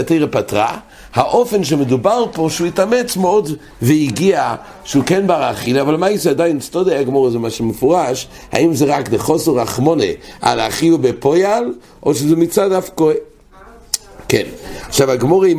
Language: English